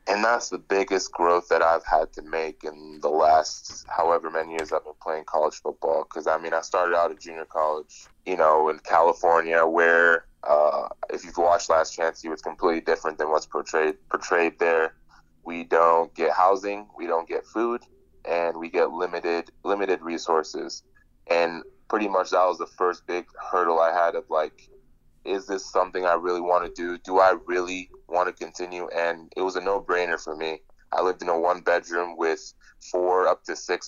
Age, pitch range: 20-39, 80-90 Hz